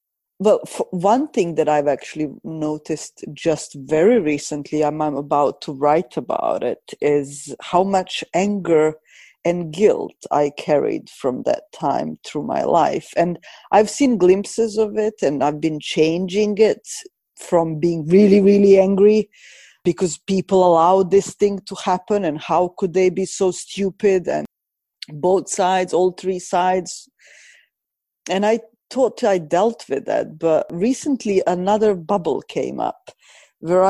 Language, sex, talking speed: English, female, 145 wpm